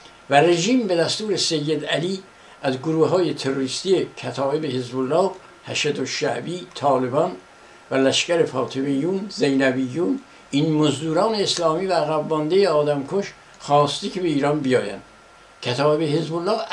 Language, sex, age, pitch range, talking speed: Persian, male, 60-79, 135-175 Hz, 120 wpm